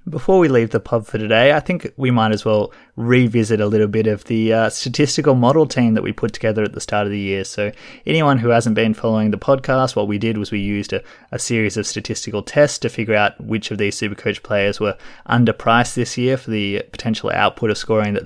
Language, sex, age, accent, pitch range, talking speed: English, male, 20-39, Australian, 105-125 Hz, 235 wpm